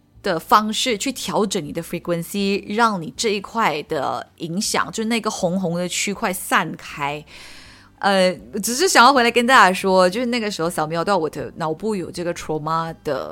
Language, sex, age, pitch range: Chinese, female, 20-39, 160-210 Hz